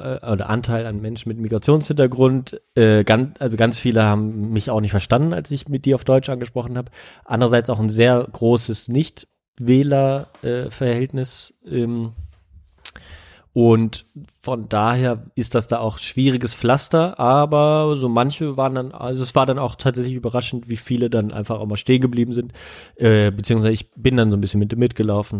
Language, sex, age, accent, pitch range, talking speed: German, male, 30-49, German, 105-130 Hz, 165 wpm